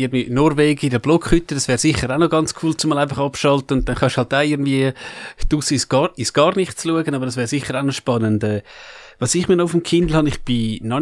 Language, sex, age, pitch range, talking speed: German, male, 30-49, 125-150 Hz, 255 wpm